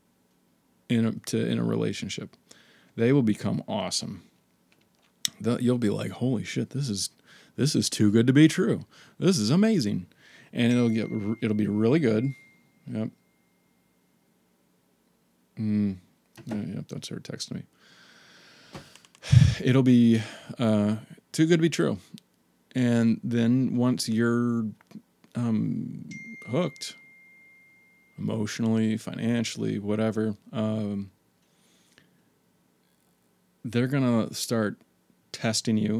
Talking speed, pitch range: 115 wpm, 105-125 Hz